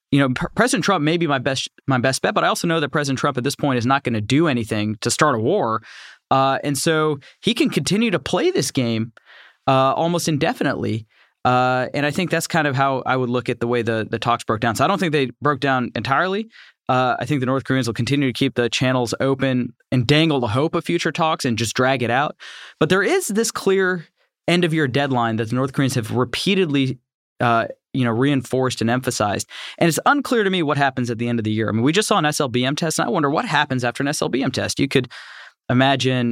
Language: English